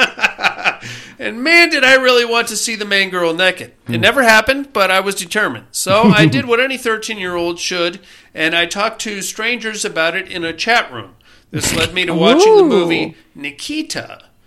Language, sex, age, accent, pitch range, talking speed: English, male, 40-59, American, 180-250 Hz, 185 wpm